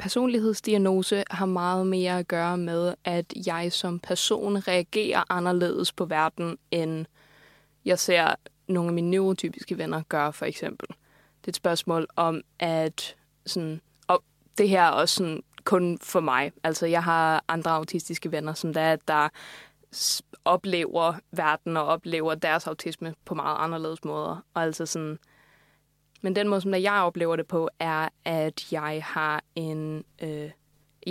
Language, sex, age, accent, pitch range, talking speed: Danish, female, 20-39, native, 160-185 Hz, 150 wpm